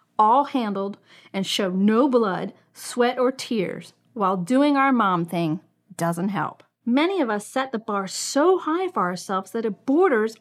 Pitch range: 195-290 Hz